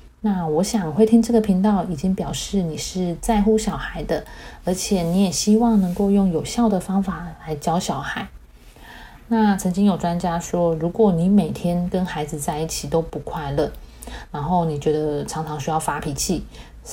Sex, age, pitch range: female, 30-49, 160-200 Hz